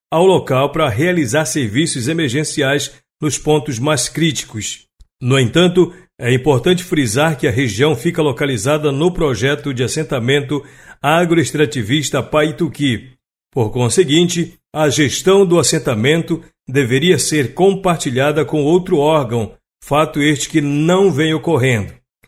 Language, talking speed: Portuguese, 120 wpm